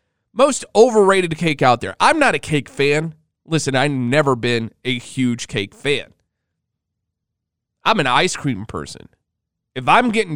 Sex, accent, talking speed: male, American, 150 wpm